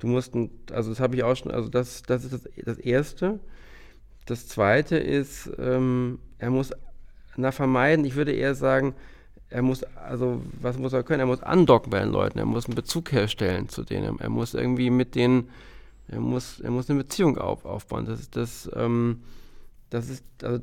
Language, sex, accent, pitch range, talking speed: German, male, German, 120-140 Hz, 195 wpm